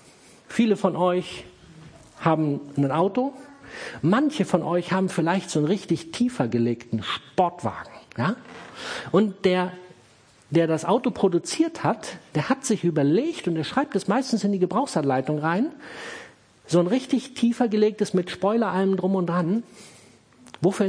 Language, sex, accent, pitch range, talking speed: German, male, German, 170-240 Hz, 140 wpm